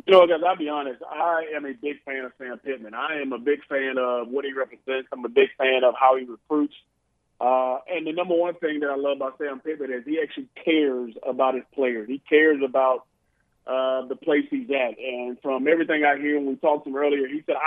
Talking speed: 240 wpm